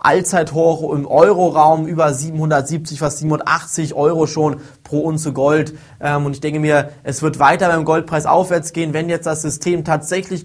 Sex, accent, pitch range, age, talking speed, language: male, German, 145-180 Hz, 20-39, 160 wpm, German